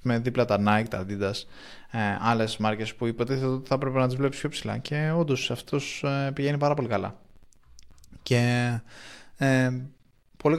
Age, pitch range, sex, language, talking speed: 20-39, 105-125 Hz, male, Greek, 155 wpm